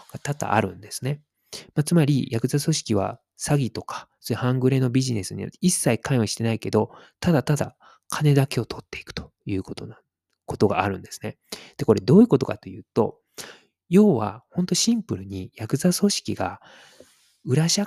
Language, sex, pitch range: Japanese, male, 105-160 Hz